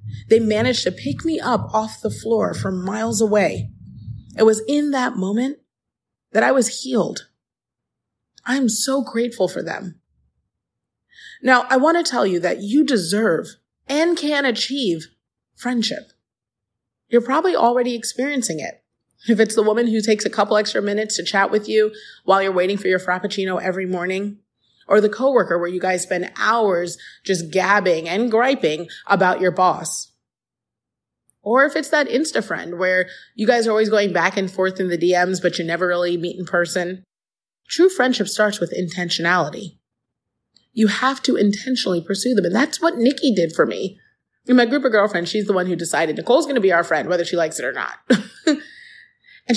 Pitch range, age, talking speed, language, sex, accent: 180-250 Hz, 30-49, 175 wpm, English, female, American